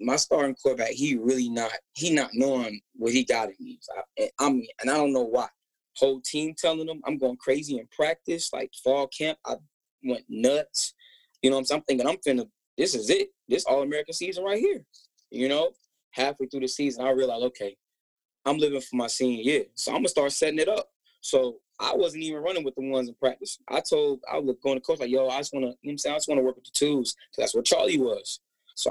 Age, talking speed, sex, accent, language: 10-29, 250 wpm, male, American, English